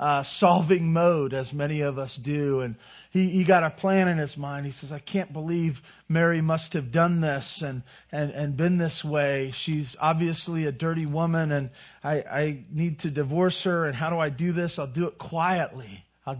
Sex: male